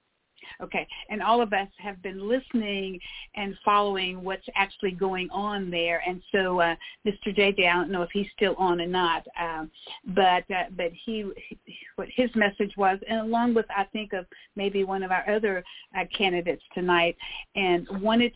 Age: 50-69